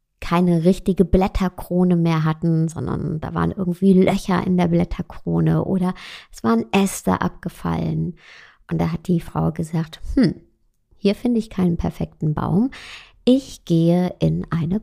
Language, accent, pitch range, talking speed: German, German, 160-200 Hz, 140 wpm